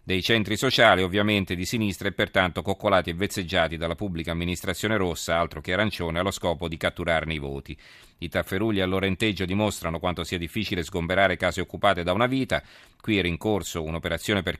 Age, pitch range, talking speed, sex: 40-59, 85-100 Hz, 175 wpm, male